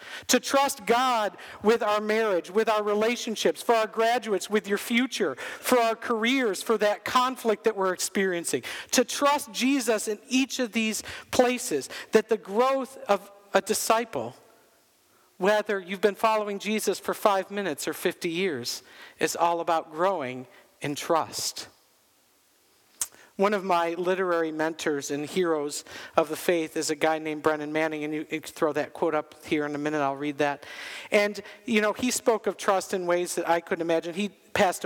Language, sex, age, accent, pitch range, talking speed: English, male, 50-69, American, 170-230 Hz, 175 wpm